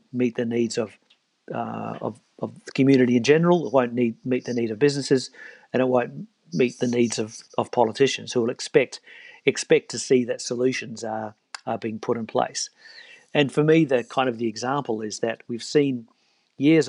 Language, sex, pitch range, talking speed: English, male, 115-135 Hz, 195 wpm